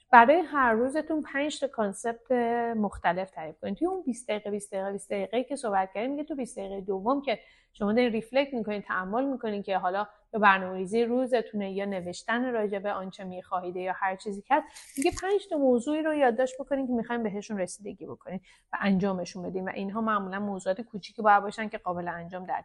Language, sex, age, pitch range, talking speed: Persian, female, 30-49, 195-245 Hz, 170 wpm